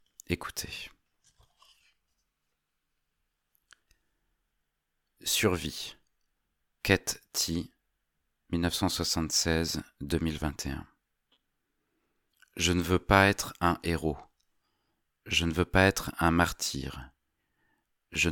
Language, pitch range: French, 75-85 Hz